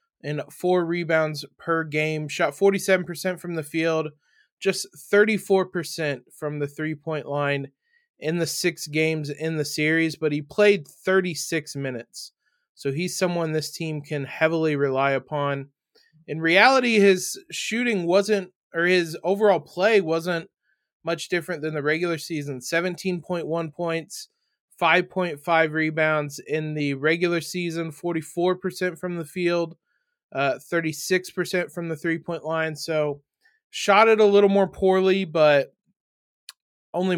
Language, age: English, 20-39